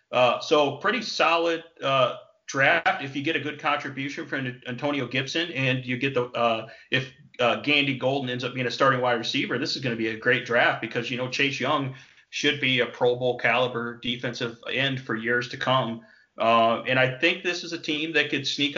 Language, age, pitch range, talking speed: English, 30-49, 120-140 Hz, 215 wpm